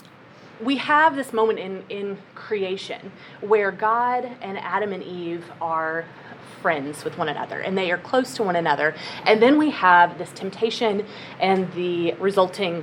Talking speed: 160 wpm